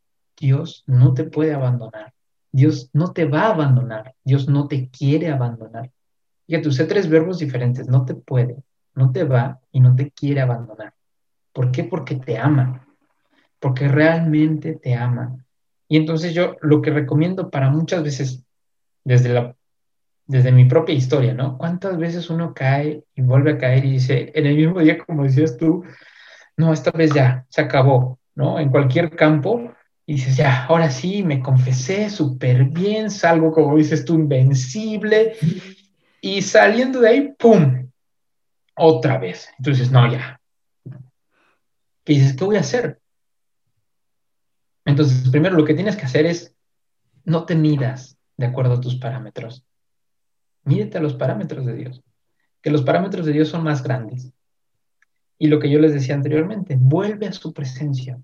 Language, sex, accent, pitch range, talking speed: Spanish, male, Mexican, 130-160 Hz, 160 wpm